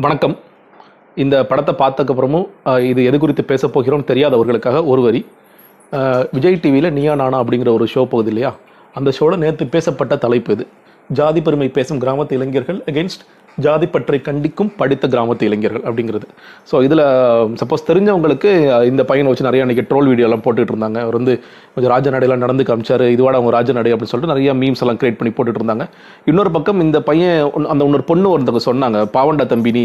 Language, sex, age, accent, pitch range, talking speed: Tamil, male, 30-49, native, 120-155 Hz, 160 wpm